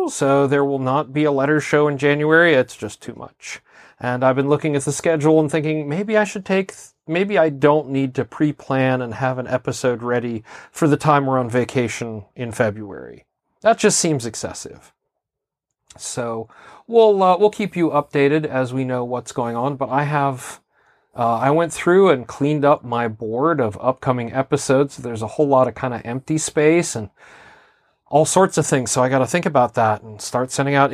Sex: male